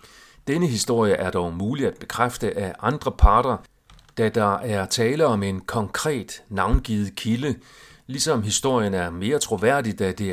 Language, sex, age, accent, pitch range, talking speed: Danish, male, 40-59, native, 95-125 Hz, 150 wpm